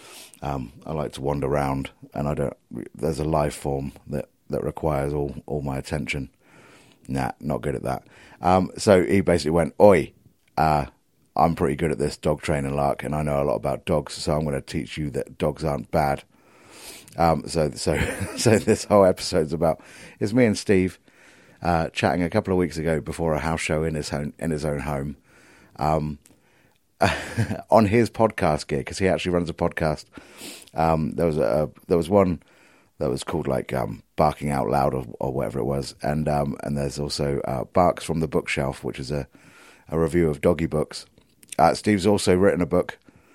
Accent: British